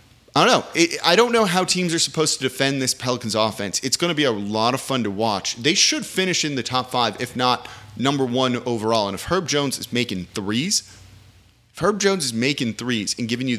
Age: 30-49